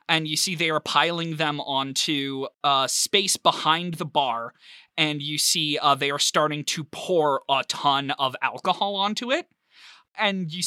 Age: 20-39